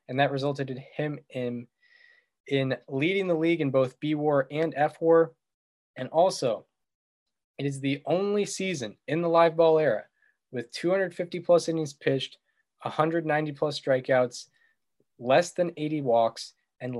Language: English